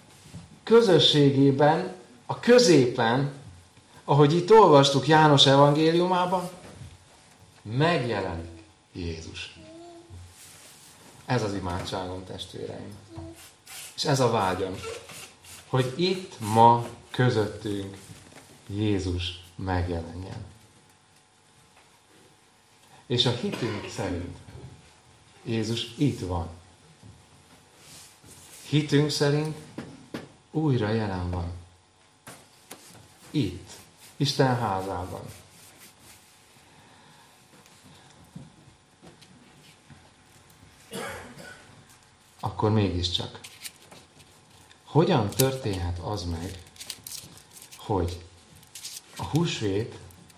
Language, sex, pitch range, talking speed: Hungarian, male, 95-130 Hz, 55 wpm